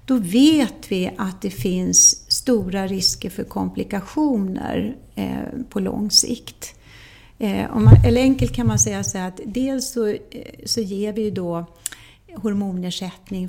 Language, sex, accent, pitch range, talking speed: Swedish, female, native, 175-230 Hz, 130 wpm